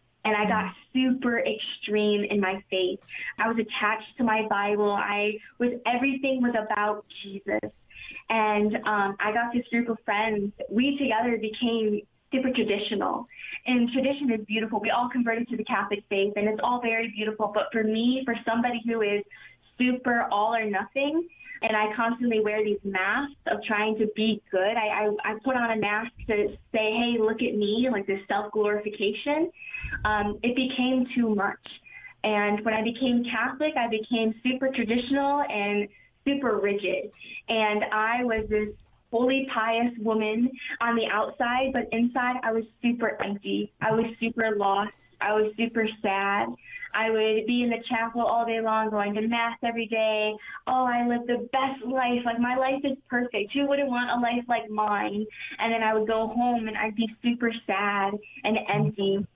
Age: 20-39